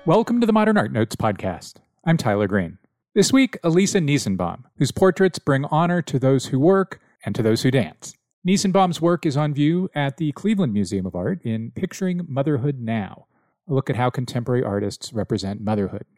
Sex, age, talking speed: male, 40-59, 185 wpm